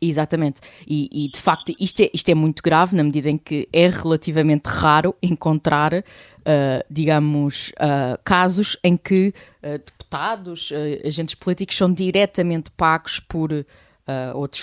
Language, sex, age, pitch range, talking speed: Portuguese, female, 20-39, 145-170 Hz, 145 wpm